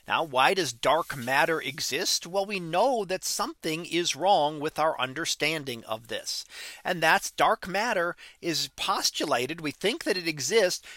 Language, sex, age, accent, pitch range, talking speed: English, male, 40-59, American, 150-210 Hz, 160 wpm